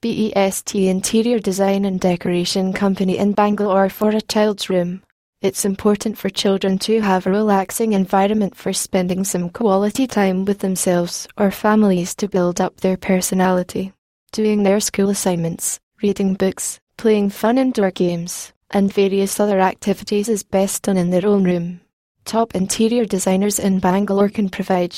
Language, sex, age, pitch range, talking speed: English, female, 20-39, 185-210 Hz, 150 wpm